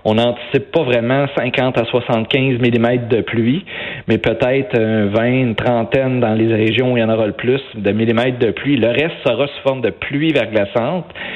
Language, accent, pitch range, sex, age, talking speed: French, Canadian, 115-135 Hz, male, 30-49, 190 wpm